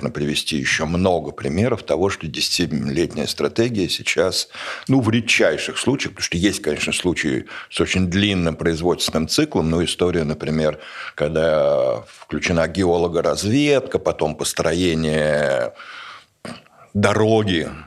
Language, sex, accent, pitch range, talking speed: Russian, male, native, 80-110 Hz, 105 wpm